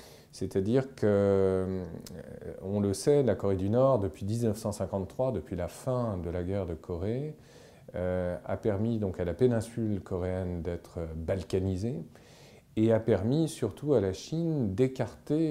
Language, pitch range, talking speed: French, 95-125 Hz, 145 wpm